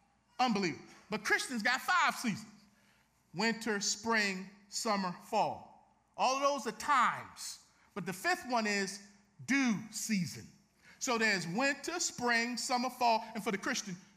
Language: English